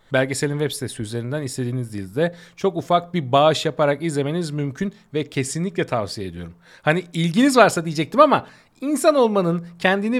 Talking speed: 145 wpm